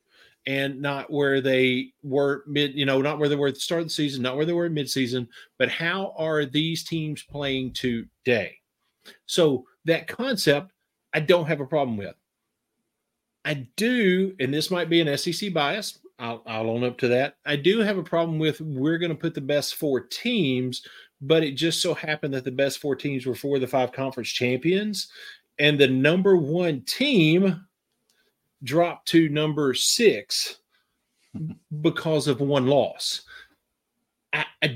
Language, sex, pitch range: English, male, 130-170 Hz